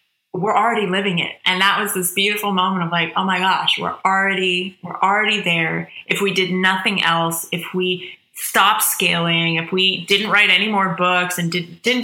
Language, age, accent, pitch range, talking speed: English, 20-39, American, 175-200 Hz, 190 wpm